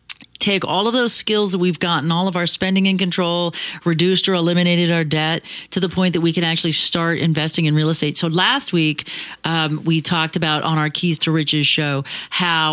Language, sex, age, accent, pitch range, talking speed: English, female, 40-59, American, 150-185 Hz, 210 wpm